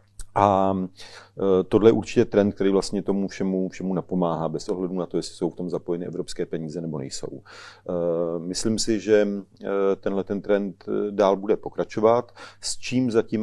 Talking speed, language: 155 wpm, Czech